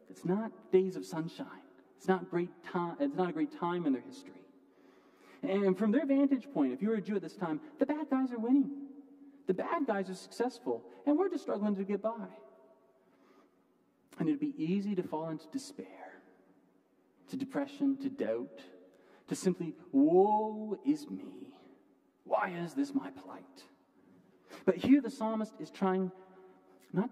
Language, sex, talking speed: English, male, 170 wpm